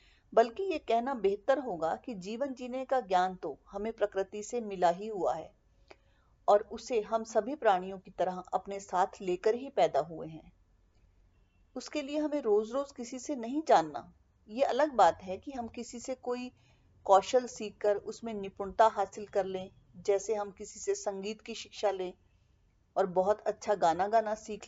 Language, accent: Hindi, native